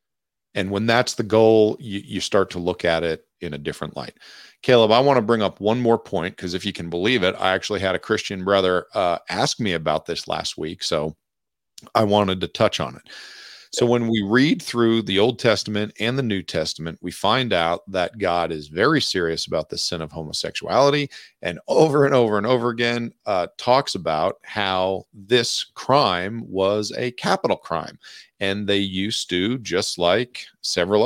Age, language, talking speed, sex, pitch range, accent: 40-59, English, 195 wpm, male, 95-120 Hz, American